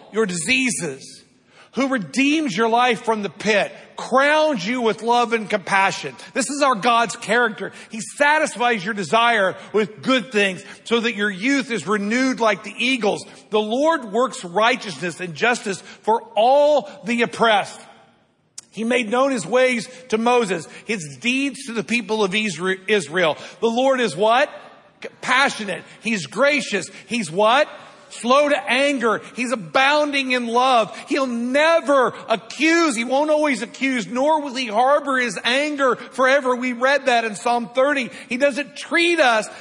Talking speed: 150 wpm